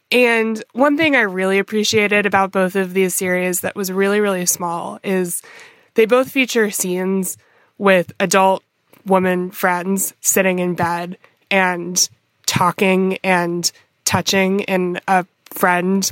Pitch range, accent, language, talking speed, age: 180-215 Hz, American, English, 130 wpm, 20-39